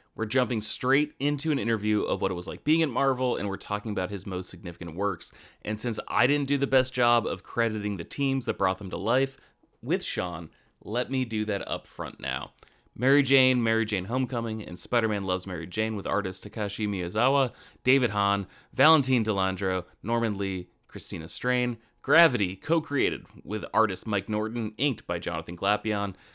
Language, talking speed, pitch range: English, 180 wpm, 100-130 Hz